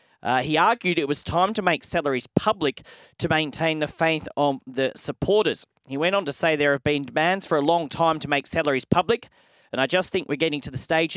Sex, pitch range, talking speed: male, 130-165 Hz, 230 wpm